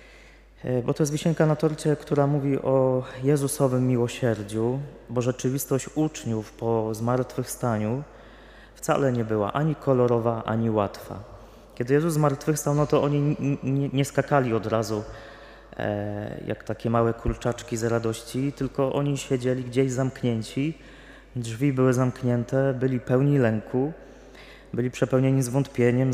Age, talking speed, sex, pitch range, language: 20-39, 120 wpm, male, 115-135 Hz, Polish